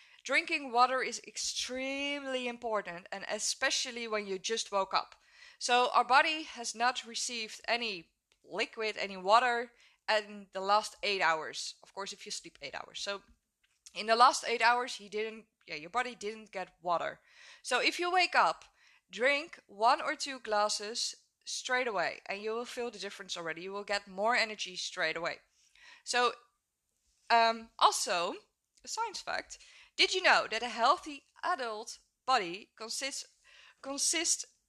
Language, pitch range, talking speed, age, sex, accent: English, 200-270 Hz, 155 wpm, 20-39, female, Dutch